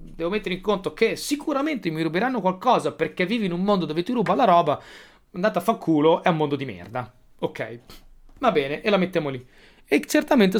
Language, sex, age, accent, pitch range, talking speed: Italian, male, 30-49, native, 130-185 Hz, 210 wpm